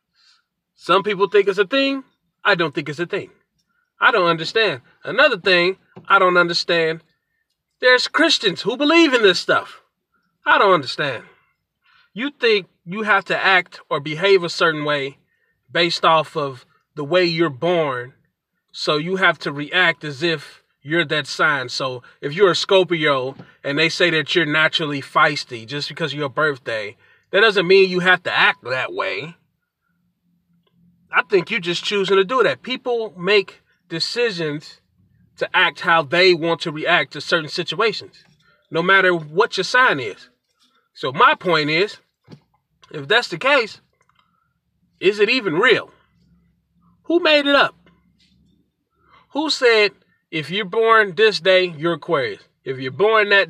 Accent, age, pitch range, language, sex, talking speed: American, 30-49, 160-205 Hz, English, male, 160 wpm